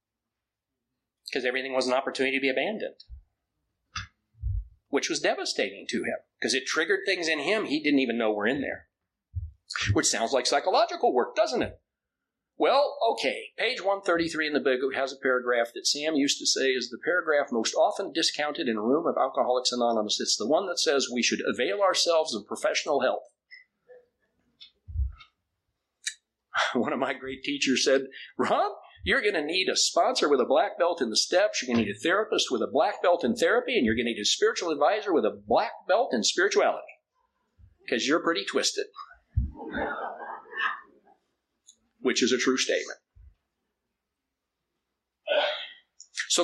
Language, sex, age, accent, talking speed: English, male, 50-69, American, 165 wpm